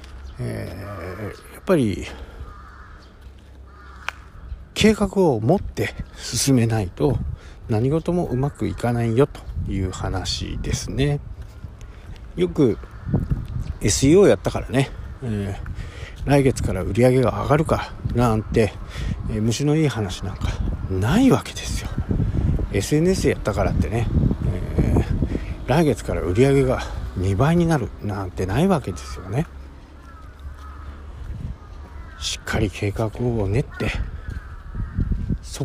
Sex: male